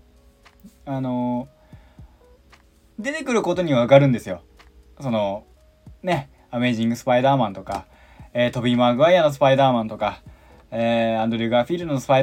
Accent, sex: native, male